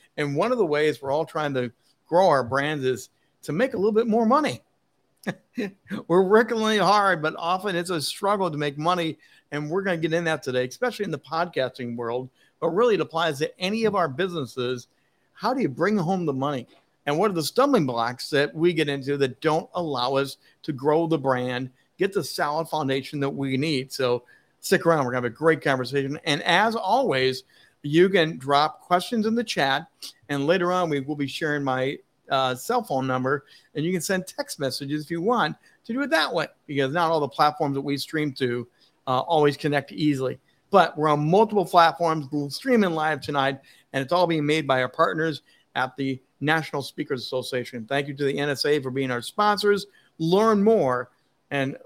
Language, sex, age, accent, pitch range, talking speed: English, male, 50-69, American, 135-170 Hz, 205 wpm